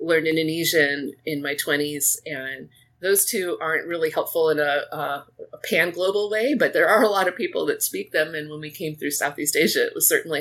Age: 30-49